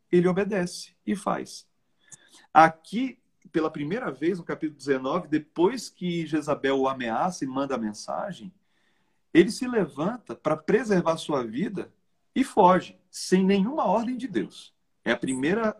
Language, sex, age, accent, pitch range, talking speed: Portuguese, male, 40-59, Brazilian, 155-215 Hz, 135 wpm